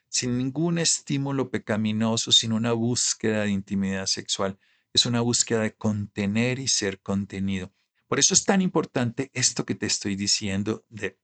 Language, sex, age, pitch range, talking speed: Spanish, male, 50-69, 100-125 Hz, 155 wpm